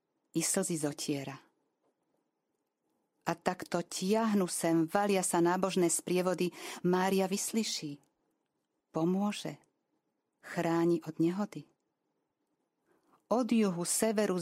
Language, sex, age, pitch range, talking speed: Slovak, female, 40-59, 160-200 Hz, 85 wpm